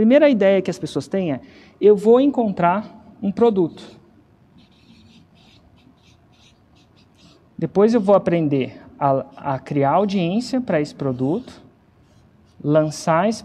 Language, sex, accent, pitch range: Portuguese, male, Brazilian, 180-250 Hz